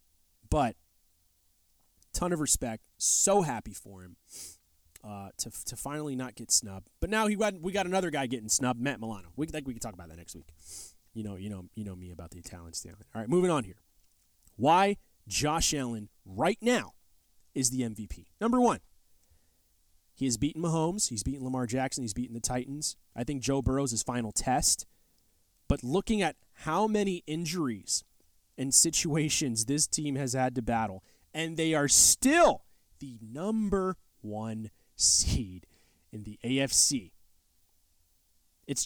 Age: 30-49